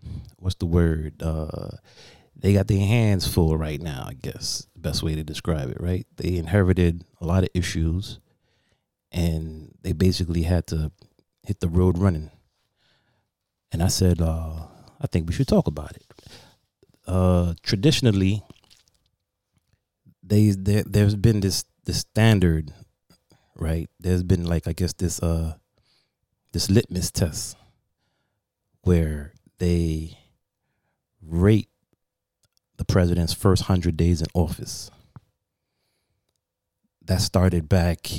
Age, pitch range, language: 30-49, 85-100 Hz, English